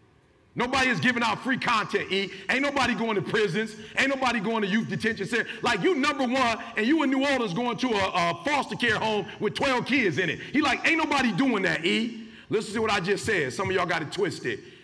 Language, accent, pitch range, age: English, American, 160-255 Hz, 40-59